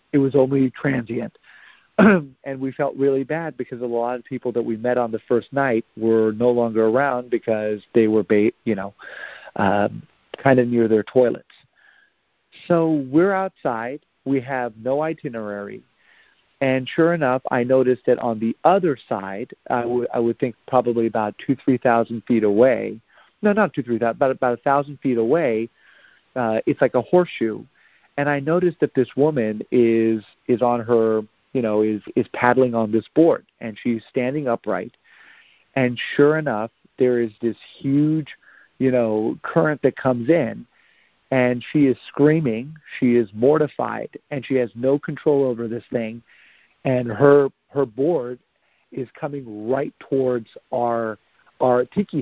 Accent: American